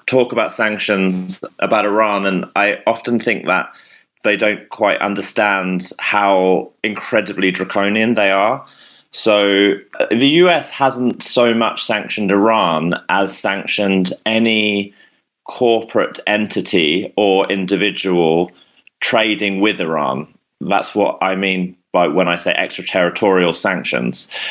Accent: British